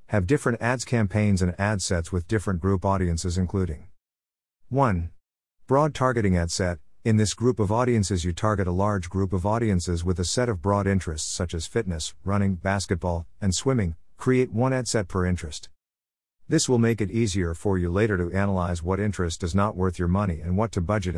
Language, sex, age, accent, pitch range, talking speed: English, male, 50-69, American, 85-110 Hz, 195 wpm